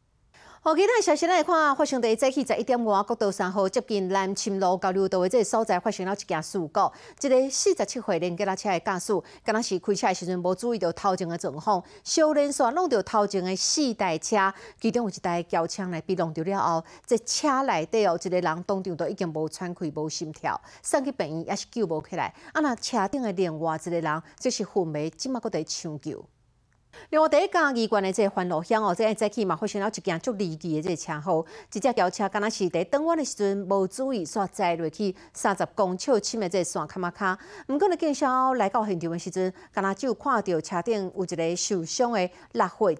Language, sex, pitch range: Chinese, female, 175-235 Hz